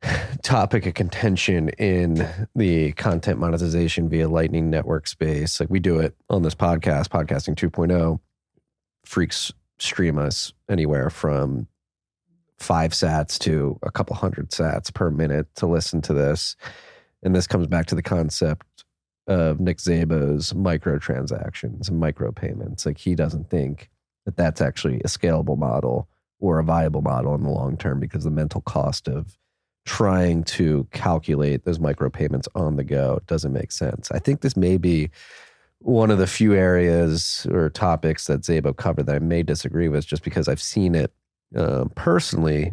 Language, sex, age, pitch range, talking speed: English, male, 30-49, 75-95 Hz, 155 wpm